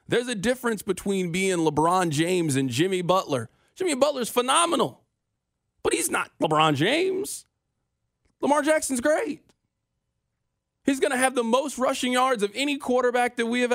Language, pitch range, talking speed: English, 150-230 Hz, 155 wpm